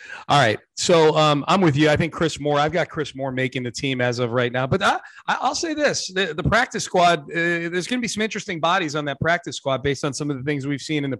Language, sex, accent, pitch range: English, male, American, 130-160 Hz